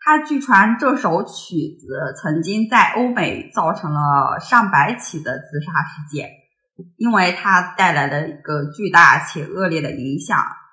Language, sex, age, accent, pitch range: Chinese, female, 20-39, native, 155-200 Hz